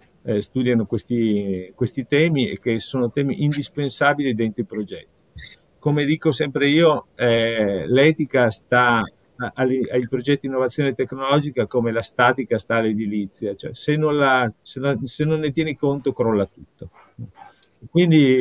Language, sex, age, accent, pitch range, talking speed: Italian, male, 50-69, native, 110-140 Hz, 125 wpm